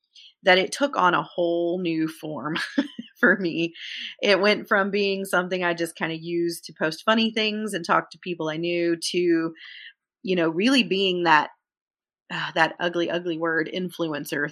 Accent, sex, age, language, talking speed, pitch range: American, female, 30-49, English, 175 wpm, 165-200 Hz